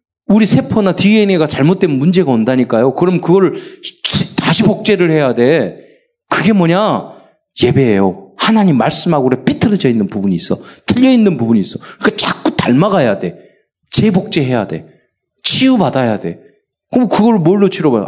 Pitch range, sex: 140-215 Hz, male